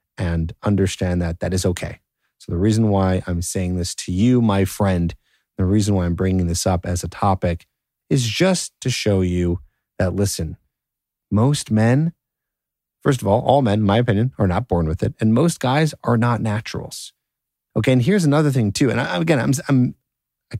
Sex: male